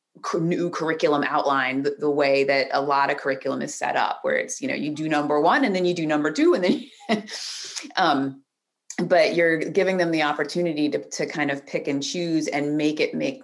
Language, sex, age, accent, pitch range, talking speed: English, female, 30-49, American, 145-175 Hz, 220 wpm